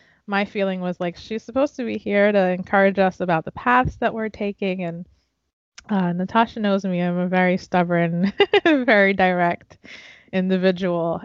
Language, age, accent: English, 20-39, American